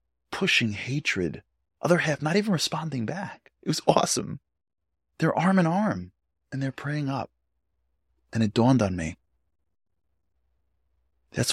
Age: 30-49